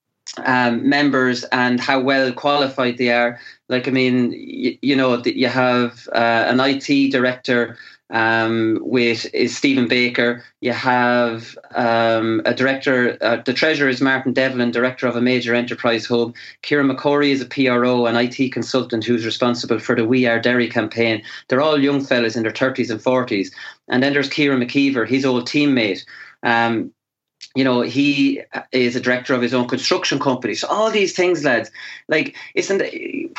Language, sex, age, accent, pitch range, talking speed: English, male, 30-49, Irish, 120-145 Hz, 170 wpm